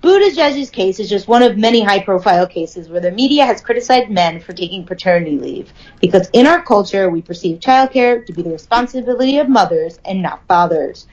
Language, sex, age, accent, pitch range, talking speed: English, female, 30-49, American, 180-270 Hz, 195 wpm